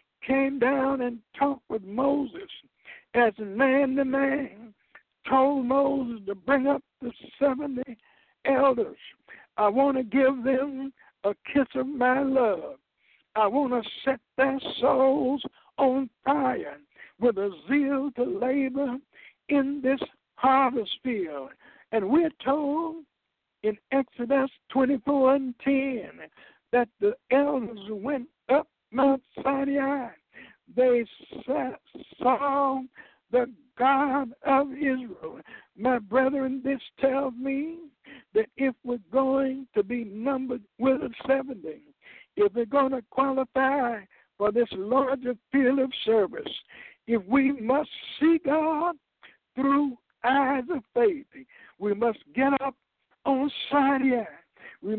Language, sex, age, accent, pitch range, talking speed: English, male, 60-79, American, 245-275 Hz, 115 wpm